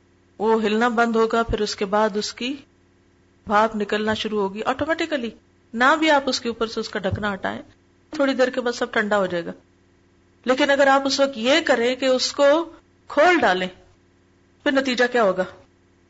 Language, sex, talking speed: Urdu, female, 190 wpm